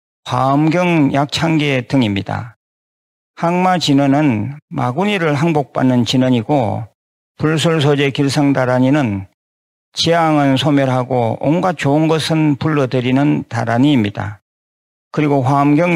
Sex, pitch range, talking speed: male, 125-150 Hz, 70 wpm